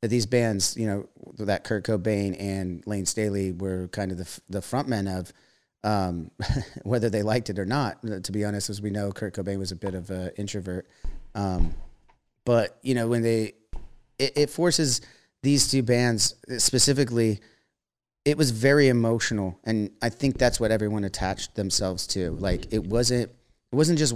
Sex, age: male, 30-49